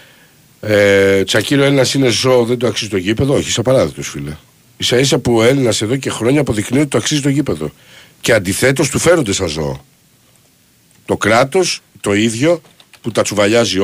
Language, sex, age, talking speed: Greek, male, 60-79, 175 wpm